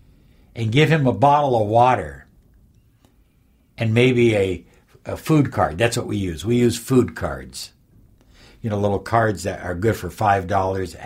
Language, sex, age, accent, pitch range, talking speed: English, male, 60-79, American, 110-170 Hz, 165 wpm